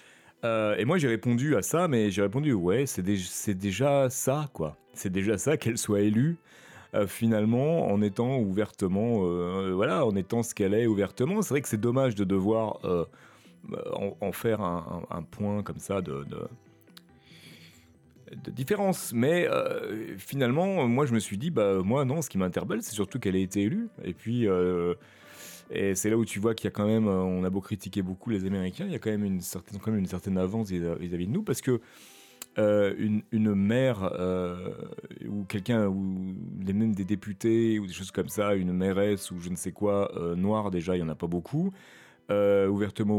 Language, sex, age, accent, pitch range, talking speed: French, male, 30-49, French, 95-120 Hz, 210 wpm